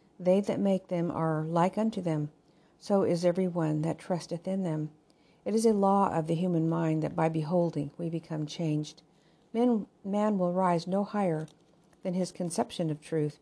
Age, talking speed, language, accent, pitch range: 50-69, 180 wpm, English, American, 155-185 Hz